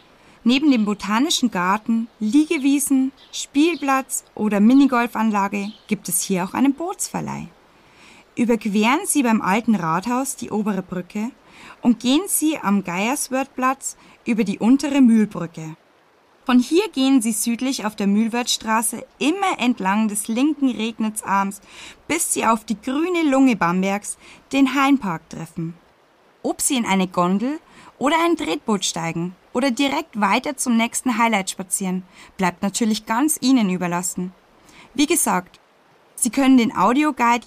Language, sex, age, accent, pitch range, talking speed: German, female, 10-29, German, 195-270 Hz, 130 wpm